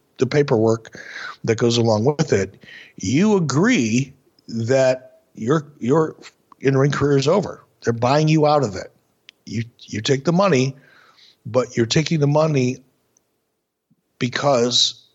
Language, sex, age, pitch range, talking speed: English, male, 60-79, 115-140 Hz, 135 wpm